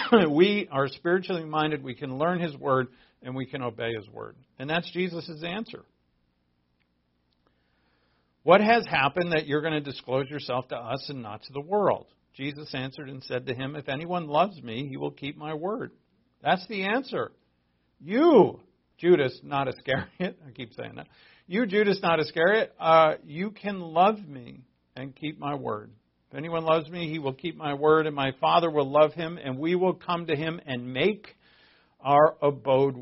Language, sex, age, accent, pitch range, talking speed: English, male, 50-69, American, 120-160 Hz, 180 wpm